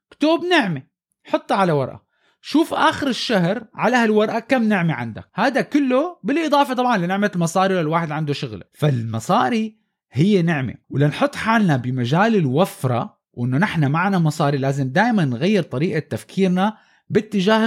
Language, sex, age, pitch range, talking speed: Arabic, male, 20-39, 170-245 Hz, 130 wpm